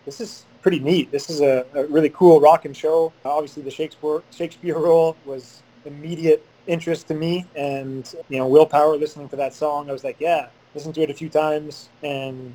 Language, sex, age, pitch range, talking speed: English, male, 20-39, 135-160 Hz, 200 wpm